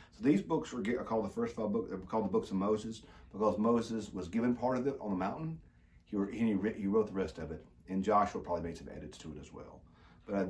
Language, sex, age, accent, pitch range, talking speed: English, male, 40-59, American, 85-110 Hz, 250 wpm